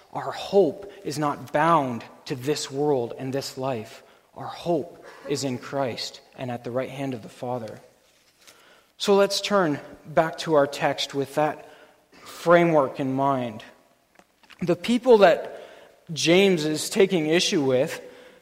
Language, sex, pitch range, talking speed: English, male, 140-185 Hz, 145 wpm